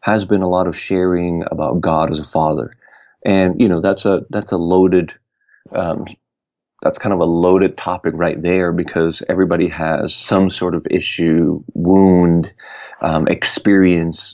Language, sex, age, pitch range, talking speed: English, male, 30-49, 90-105 Hz, 160 wpm